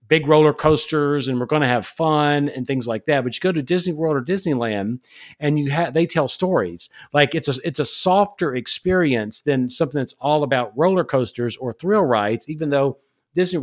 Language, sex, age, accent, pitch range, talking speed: English, male, 50-69, American, 120-165 Hz, 205 wpm